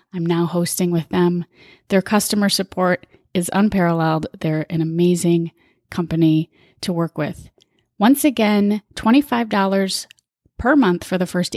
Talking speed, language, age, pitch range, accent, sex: 130 wpm, English, 30-49, 175-220 Hz, American, female